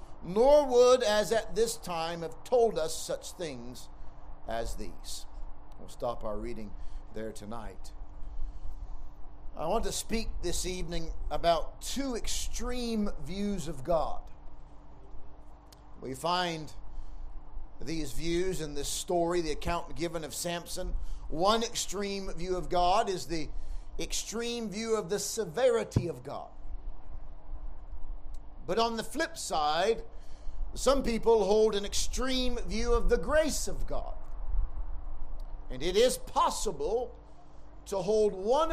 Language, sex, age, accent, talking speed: English, male, 50-69, American, 125 wpm